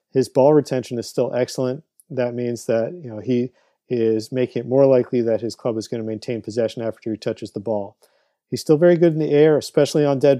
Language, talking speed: English, 230 wpm